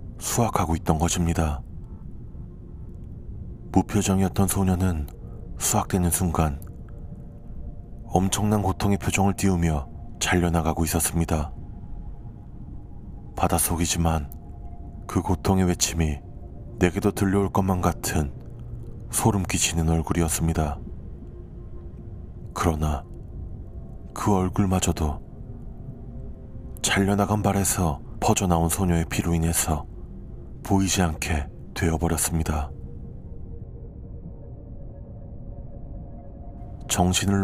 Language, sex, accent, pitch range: Korean, male, native, 85-100 Hz